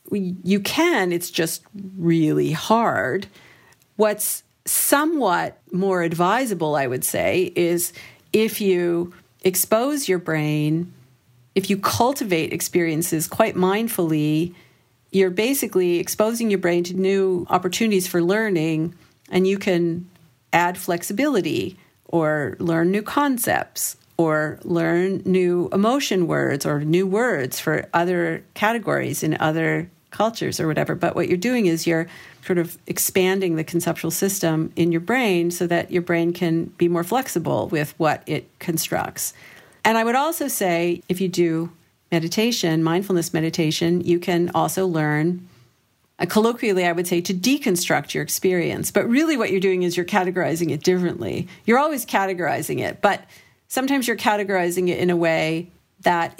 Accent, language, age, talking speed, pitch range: American, English, 50-69, 140 wpm, 165-195 Hz